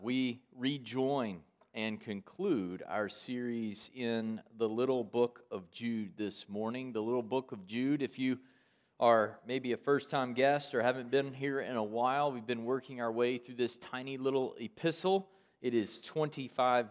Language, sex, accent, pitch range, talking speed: English, male, American, 110-135 Hz, 165 wpm